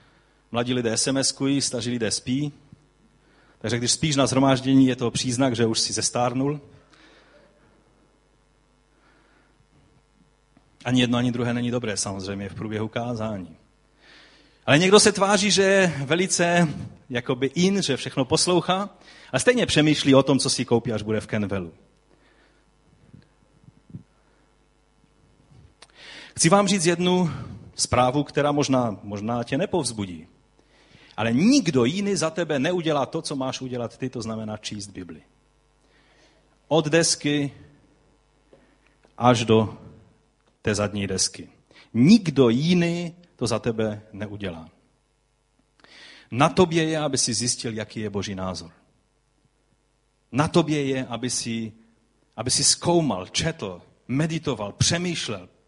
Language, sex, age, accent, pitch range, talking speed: Czech, male, 30-49, native, 115-155 Hz, 120 wpm